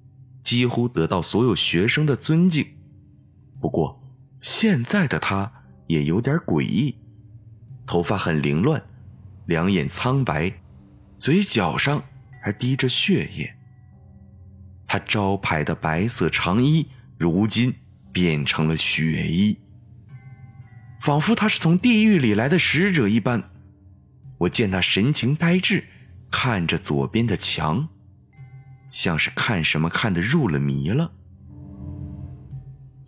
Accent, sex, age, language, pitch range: native, male, 30-49, Chinese, 95-135 Hz